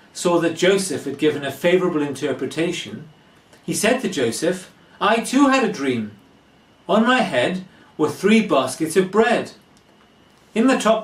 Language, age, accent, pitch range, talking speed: English, 40-59, British, 125-175 Hz, 150 wpm